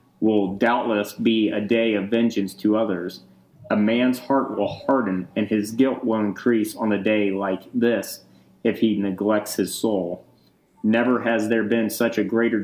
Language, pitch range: English, 105-120 Hz